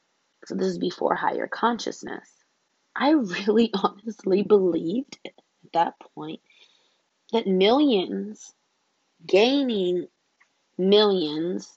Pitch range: 180-230 Hz